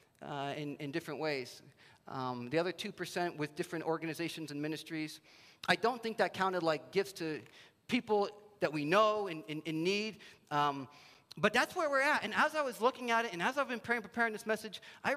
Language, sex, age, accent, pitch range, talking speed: English, male, 40-59, American, 150-210 Hz, 205 wpm